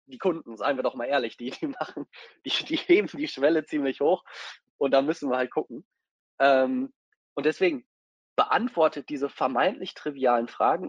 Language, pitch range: German, 120-180 Hz